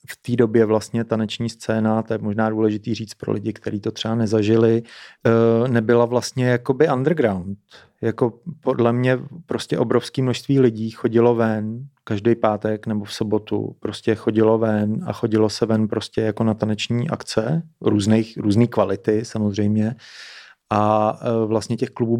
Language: Czech